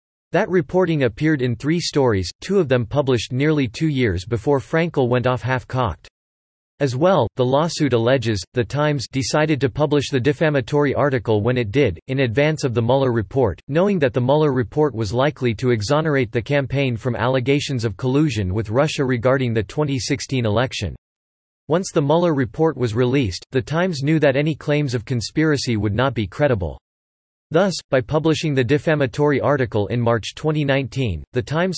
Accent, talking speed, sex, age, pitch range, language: American, 170 wpm, male, 40-59, 120-150 Hz, English